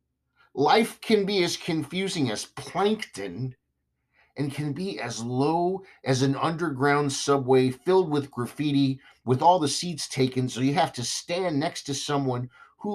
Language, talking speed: English, 155 wpm